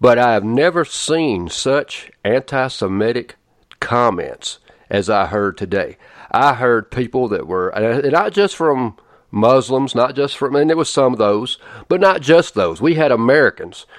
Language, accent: English, American